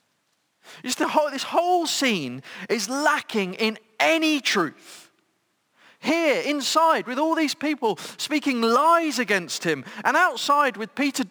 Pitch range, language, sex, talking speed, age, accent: 205-300 Hz, English, male, 115 wpm, 40-59, British